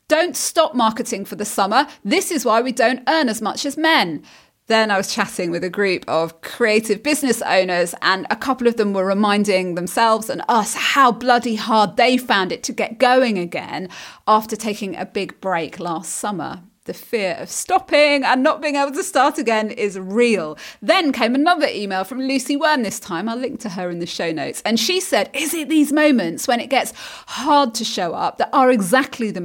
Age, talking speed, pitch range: 30-49, 210 wpm, 200-280 Hz